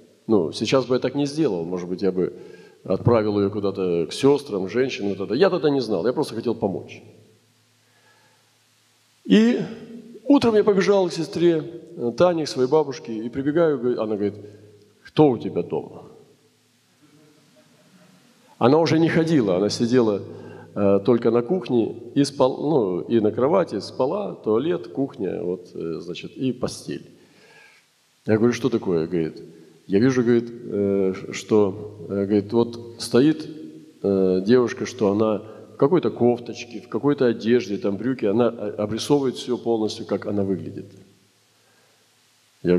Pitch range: 105-135 Hz